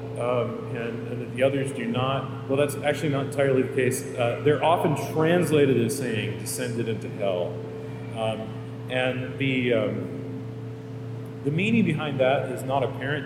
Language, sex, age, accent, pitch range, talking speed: English, male, 40-59, American, 115-135 Hz, 160 wpm